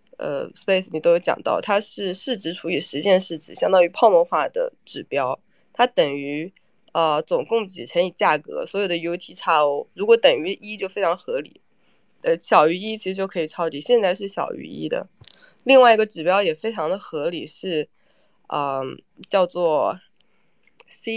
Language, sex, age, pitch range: Chinese, female, 20-39, 170-235 Hz